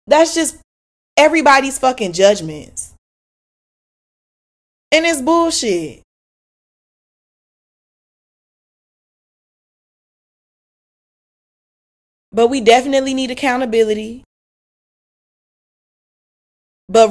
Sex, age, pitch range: female, 10-29, 180-255 Hz